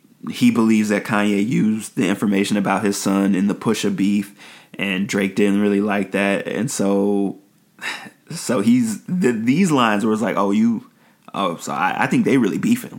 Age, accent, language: 30-49, American, English